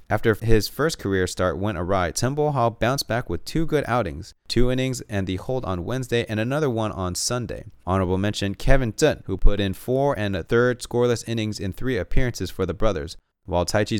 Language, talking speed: English, 205 wpm